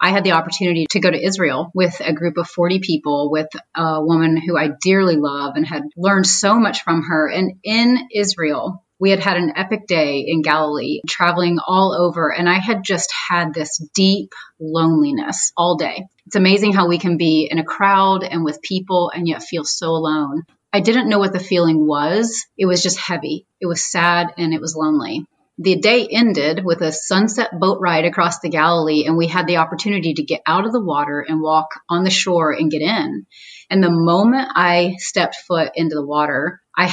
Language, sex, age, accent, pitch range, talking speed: English, female, 30-49, American, 160-190 Hz, 205 wpm